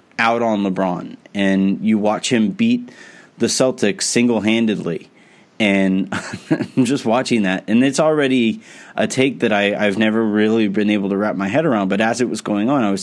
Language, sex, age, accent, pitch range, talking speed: English, male, 30-49, American, 100-120 Hz, 185 wpm